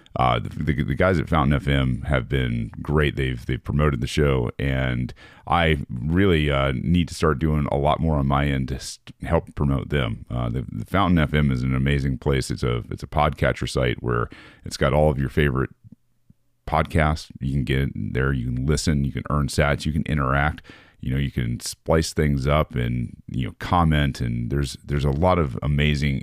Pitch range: 65-80 Hz